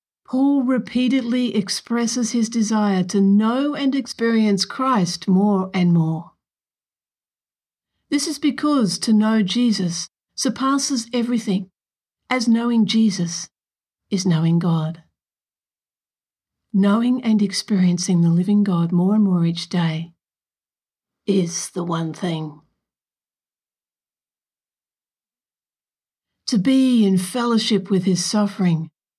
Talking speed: 100 wpm